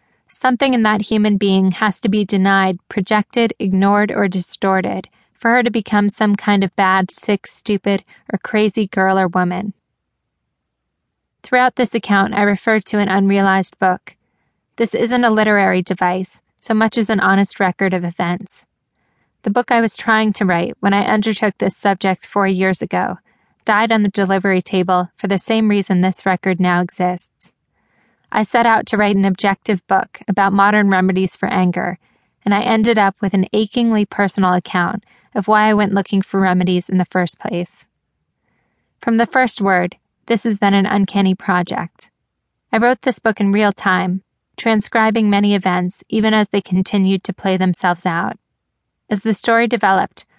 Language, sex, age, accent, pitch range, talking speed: English, female, 20-39, American, 190-215 Hz, 170 wpm